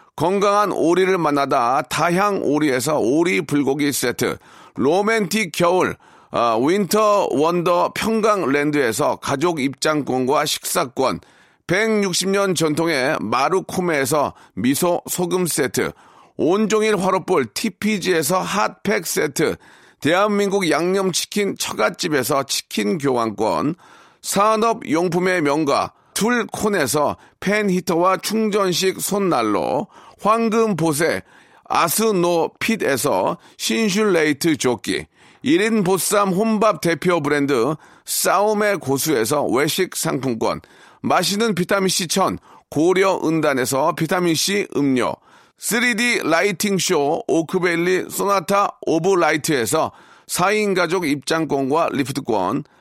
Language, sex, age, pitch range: Korean, male, 40-59, 155-205 Hz